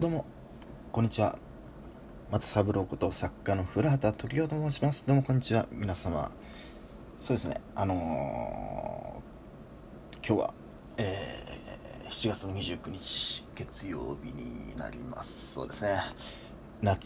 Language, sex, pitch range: Japanese, male, 95-125 Hz